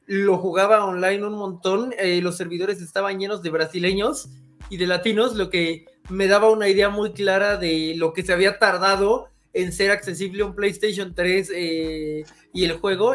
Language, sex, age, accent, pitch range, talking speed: Spanish, male, 20-39, Mexican, 180-220 Hz, 180 wpm